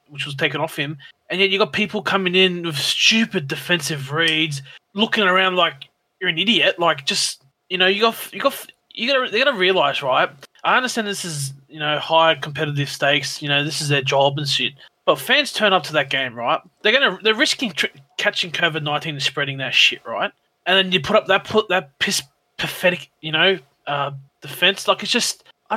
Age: 20-39